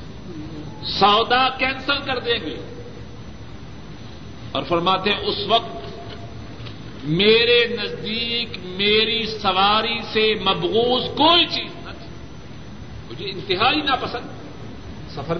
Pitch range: 155-235 Hz